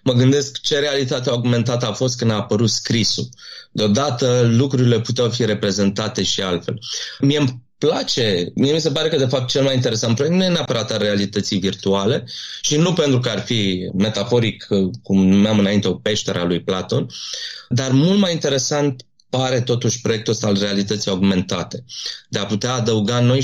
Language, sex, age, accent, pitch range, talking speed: Romanian, male, 20-39, native, 105-145 Hz, 175 wpm